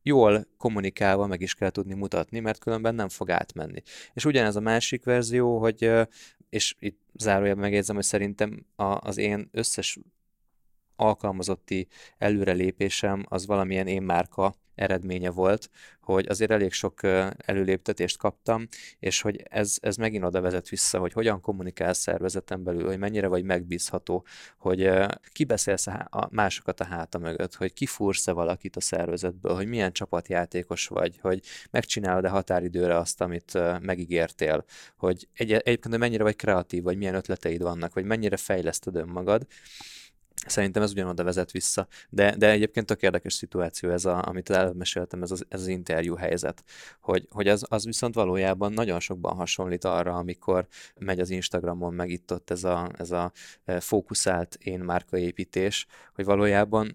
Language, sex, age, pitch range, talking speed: Hungarian, male, 20-39, 90-105 Hz, 150 wpm